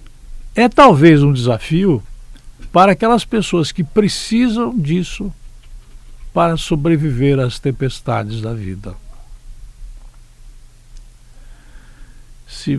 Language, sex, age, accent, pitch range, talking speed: Portuguese, male, 60-79, Brazilian, 120-155 Hz, 80 wpm